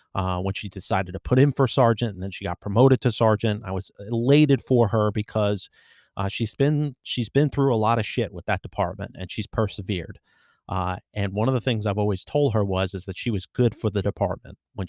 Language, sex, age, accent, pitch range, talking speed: English, male, 30-49, American, 95-115 Hz, 235 wpm